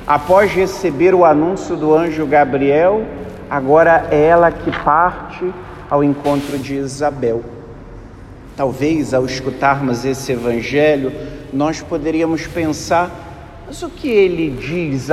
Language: Portuguese